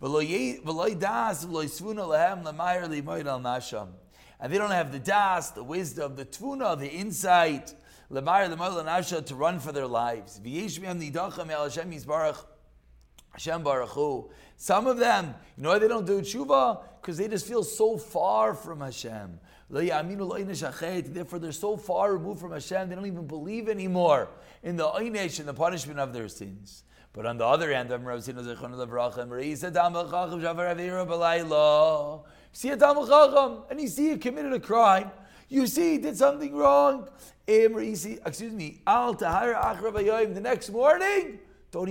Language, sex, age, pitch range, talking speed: English, male, 30-49, 135-205 Hz, 115 wpm